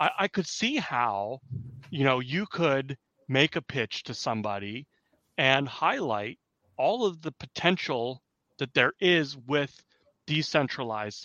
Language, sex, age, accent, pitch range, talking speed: English, male, 30-49, American, 125-160 Hz, 130 wpm